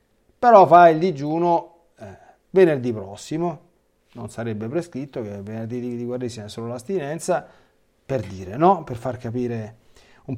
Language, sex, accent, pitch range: Italian, male, native, 110-165 Hz